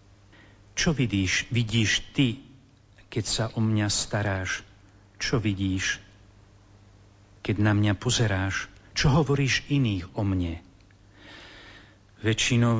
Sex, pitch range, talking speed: male, 100-120 Hz, 100 wpm